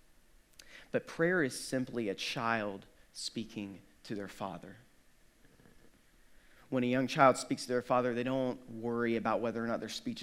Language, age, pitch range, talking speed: English, 30-49, 105-130 Hz, 160 wpm